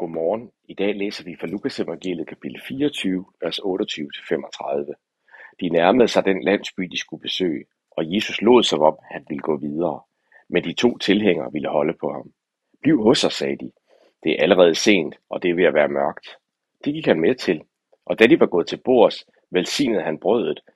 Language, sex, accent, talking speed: Danish, male, native, 195 wpm